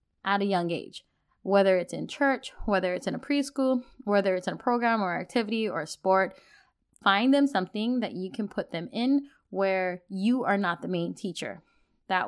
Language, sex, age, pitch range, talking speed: English, female, 20-39, 185-260 Hz, 190 wpm